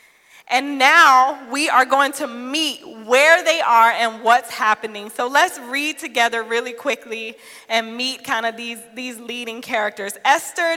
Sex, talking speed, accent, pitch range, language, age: female, 155 wpm, American, 220-280 Hz, English, 20-39